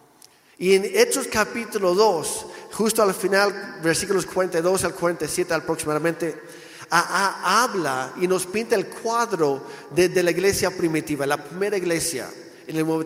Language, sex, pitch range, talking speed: Spanish, male, 160-205 Hz, 140 wpm